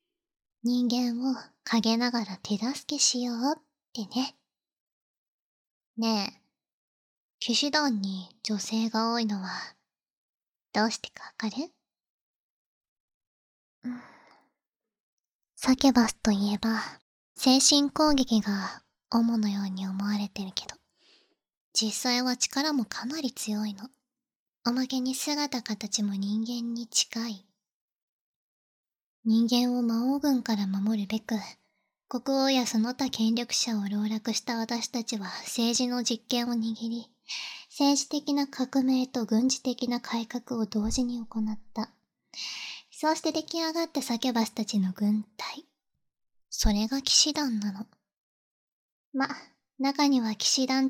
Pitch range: 220-260 Hz